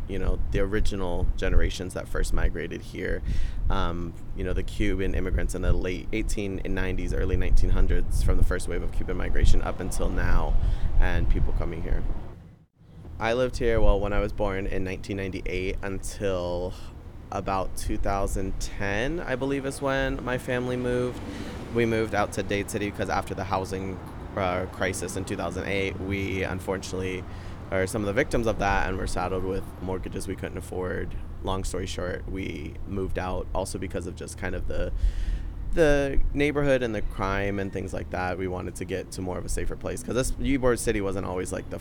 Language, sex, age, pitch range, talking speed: English, male, 20-39, 90-100 Hz, 180 wpm